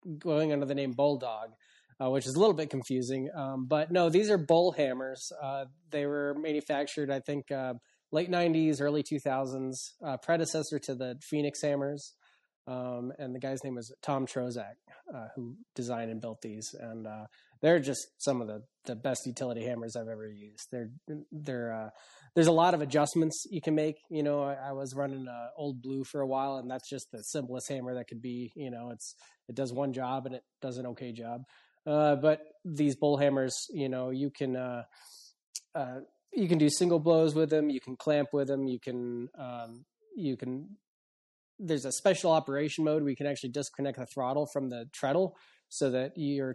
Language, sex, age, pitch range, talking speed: English, male, 20-39, 125-150 Hz, 200 wpm